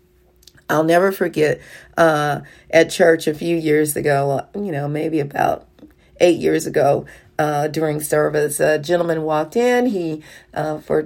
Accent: American